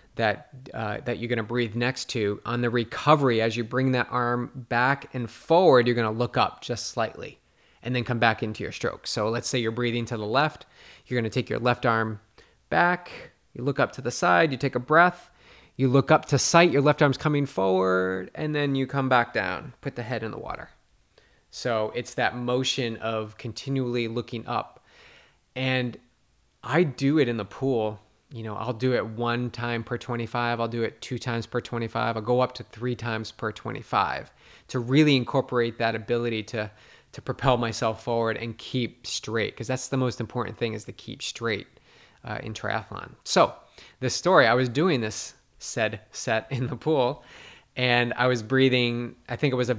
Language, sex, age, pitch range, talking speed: English, male, 20-39, 115-130 Hz, 205 wpm